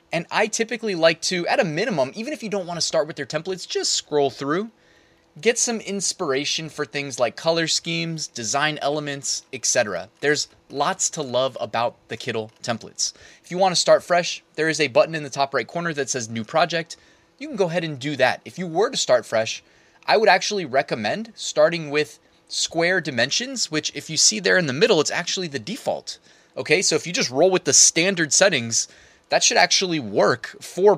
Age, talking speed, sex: 20-39, 205 wpm, male